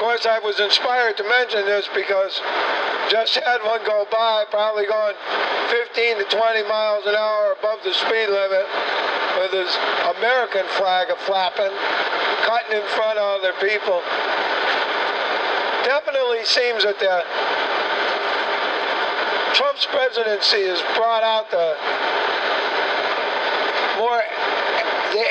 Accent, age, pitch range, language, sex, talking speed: American, 50-69, 195-235 Hz, English, male, 110 wpm